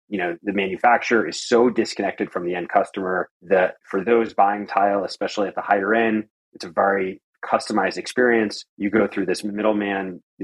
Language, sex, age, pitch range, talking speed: English, male, 30-49, 95-115 Hz, 185 wpm